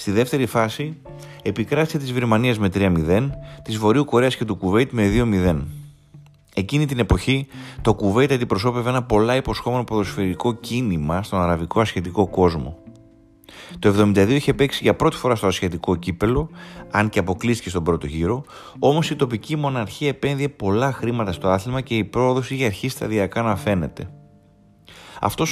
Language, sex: Greek, male